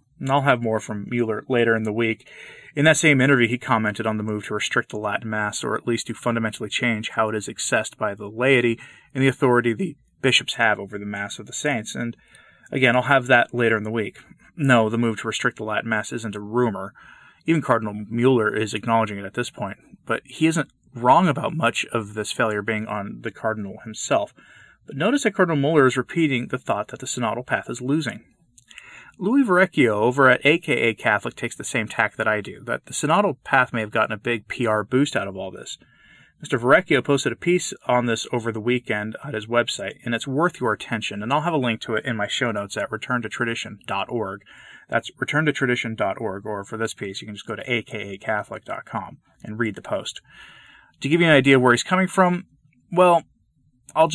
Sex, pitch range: male, 110-135 Hz